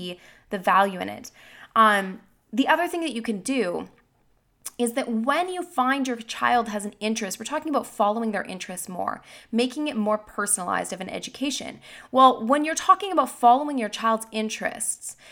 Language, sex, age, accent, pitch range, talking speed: English, female, 20-39, American, 205-260 Hz, 175 wpm